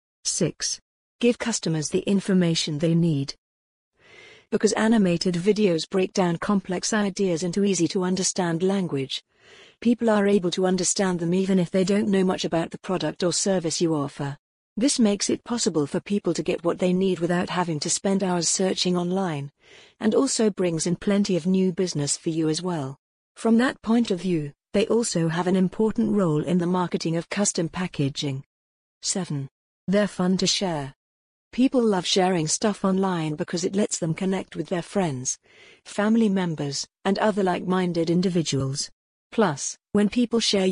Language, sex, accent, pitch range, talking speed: English, female, British, 165-200 Hz, 165 wpm